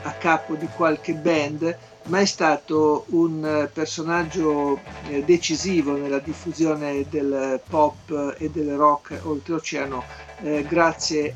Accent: native